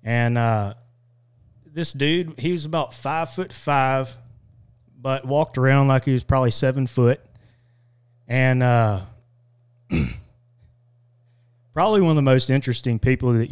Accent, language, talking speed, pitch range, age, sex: American, English, 130 wpm, 120-145 Hz, 30-49, male